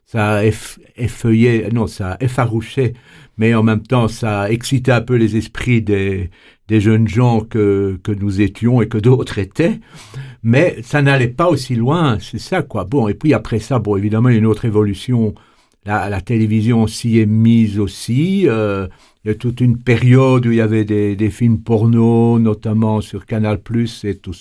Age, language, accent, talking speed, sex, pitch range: 60-79, French, French, 190 wpm, male, 105-125 Hz